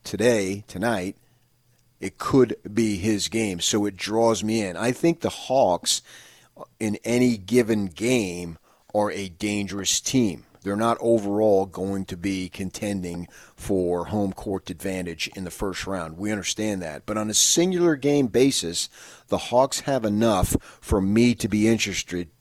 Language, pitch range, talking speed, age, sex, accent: English, 85-105 Hz, 155 wpm, 40-59, male, American